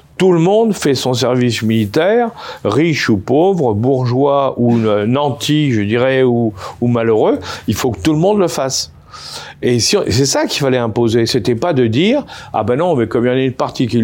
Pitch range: 110-140 Hz